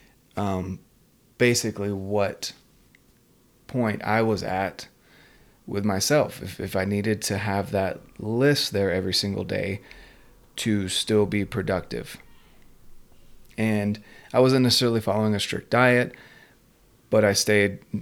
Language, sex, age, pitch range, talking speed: English, male, 30-49, 100-120 Hz, 120 wpm